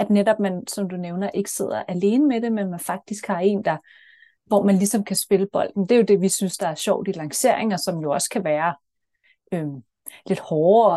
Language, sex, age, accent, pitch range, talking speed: Danish, female, 30-49, native, 185-225 Hz, 230 wpm